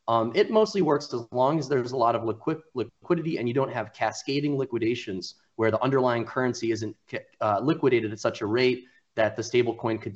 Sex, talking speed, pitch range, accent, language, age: male, 200 wpm, 110-130 Hz, American, English, 30-49